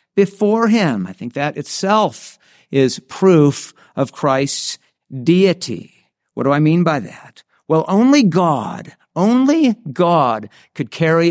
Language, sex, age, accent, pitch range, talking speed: English, male, 50-69, American, 120-160 Hz, 125 wpm